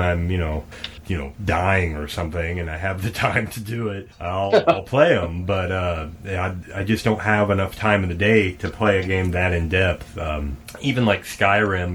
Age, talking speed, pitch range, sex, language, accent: 30-49, 215 wpm, 85-105 Hz, male, English, American